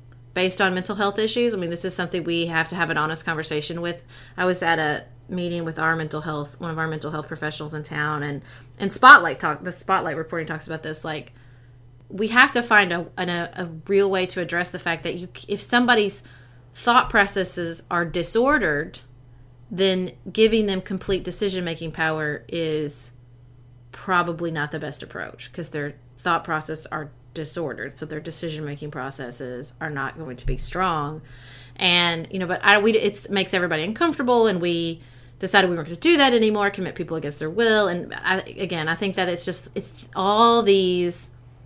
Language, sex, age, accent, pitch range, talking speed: English, female, 30-49, American, 145-185 Hz, 190 wpm